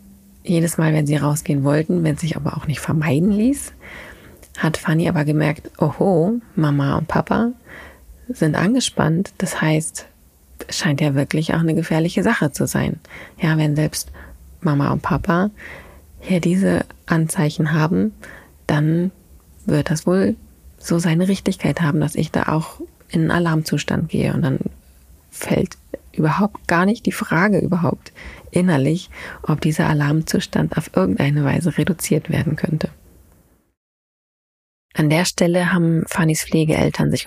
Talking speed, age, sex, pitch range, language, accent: 140 wpm, 30-49, female, 150-180 Hz, German, German